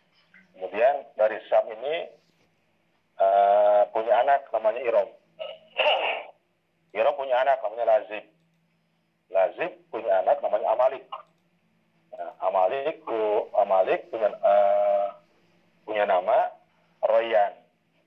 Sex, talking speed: male, 95 wpm